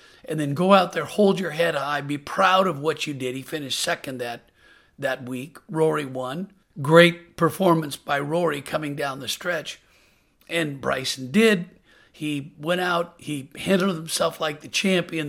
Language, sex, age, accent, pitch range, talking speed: English, male, 50-69, American, 145-195 Hz, 170 wpm